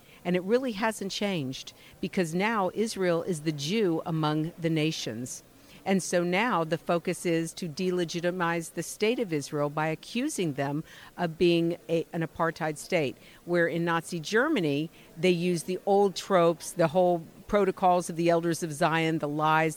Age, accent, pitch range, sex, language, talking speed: 50-69, American, 155-185 Hz, female, English, 165 wpm